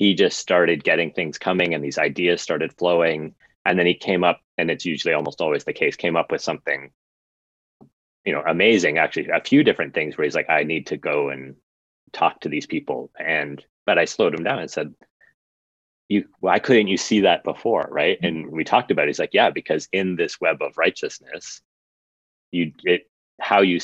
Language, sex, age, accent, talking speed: English, male, 30-49, American, 205 wpm